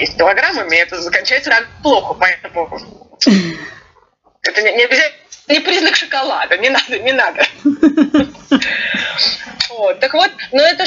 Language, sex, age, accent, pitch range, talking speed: Russian, female, 20-39, native, 200-285 Hz, 125 wpm